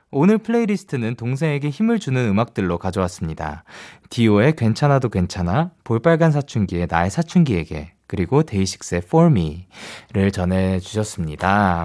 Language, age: Korean, 20-39